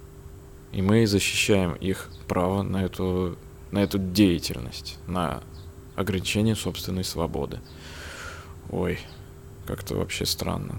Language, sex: Russian, male